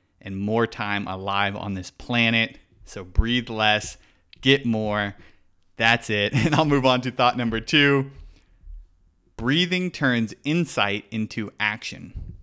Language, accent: English, American